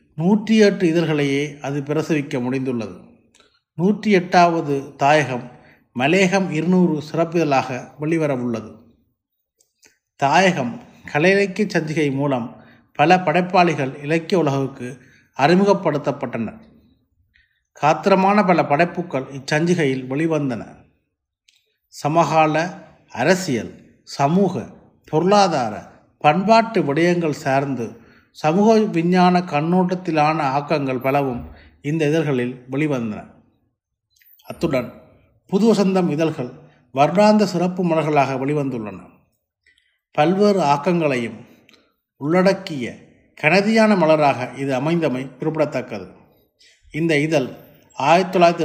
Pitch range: 135-180 Hz